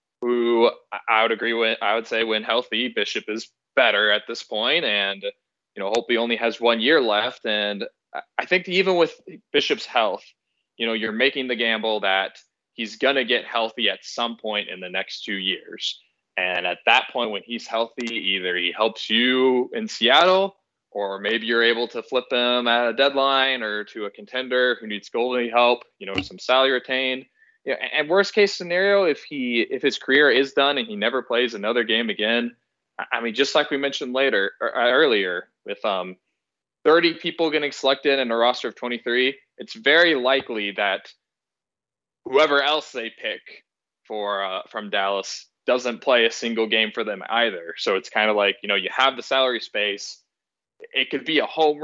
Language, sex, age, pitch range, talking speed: English, male, 20-39, 110-140 Hz, 190 wpm